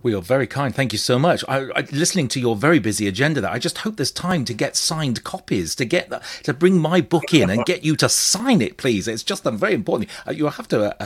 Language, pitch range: English, 105-160 Hz